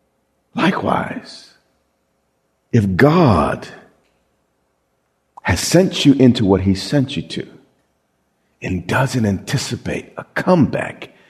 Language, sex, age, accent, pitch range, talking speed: English, male, 50-69, American, 115-180 Hz, 90 wpm